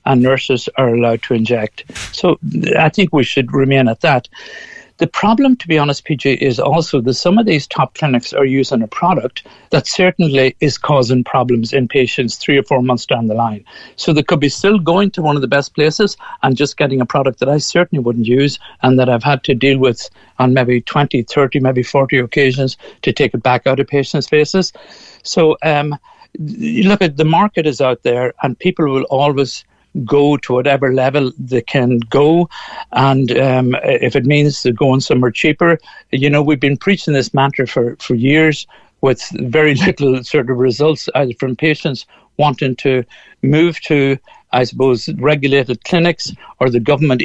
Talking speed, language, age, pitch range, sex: 190 wpm, English, 60-79, 125-155 Hz, male